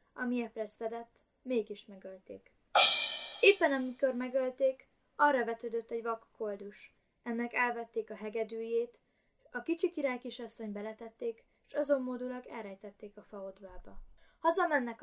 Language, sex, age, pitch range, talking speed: Hungarian, female, 20-39, 210-270 Hz, 120 wpm